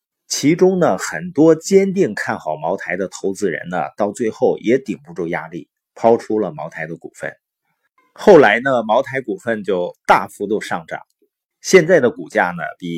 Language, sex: Chinese, male